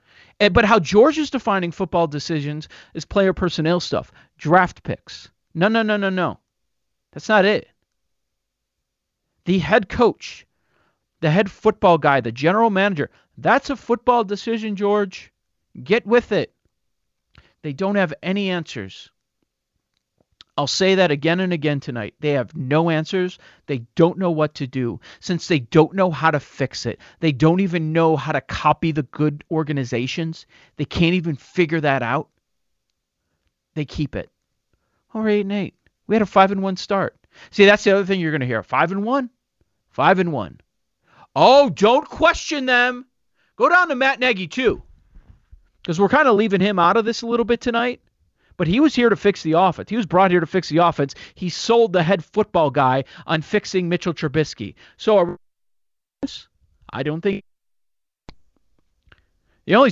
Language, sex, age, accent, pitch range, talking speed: English, male, 40-59, American, 145-205 Hz, 170 wpm